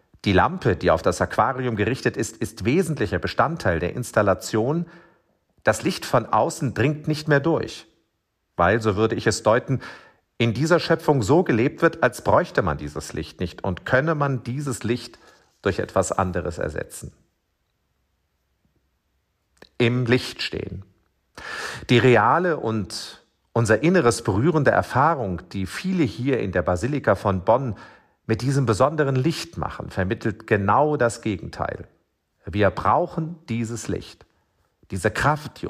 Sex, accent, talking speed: male, German, 135 wpm